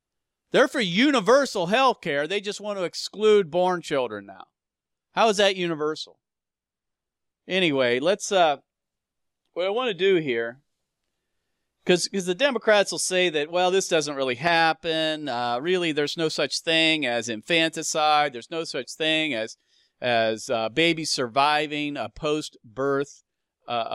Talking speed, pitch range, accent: 150 wpm, 130-175 Hz, American